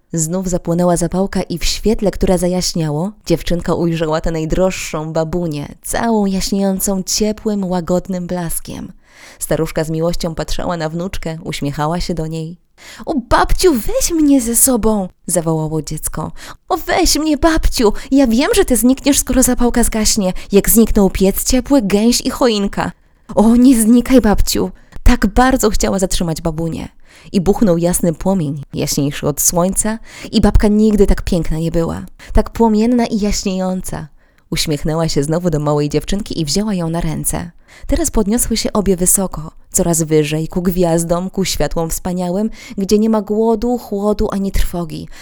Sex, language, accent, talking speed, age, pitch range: female, Polish, native, 155 wpm, 20-39, 165-215 Hz